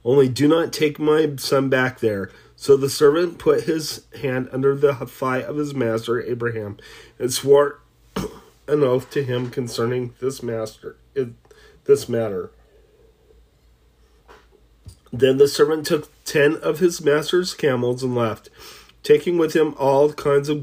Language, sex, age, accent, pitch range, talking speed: English, male, 40-59, American, 125-150 Hz, 145 wpm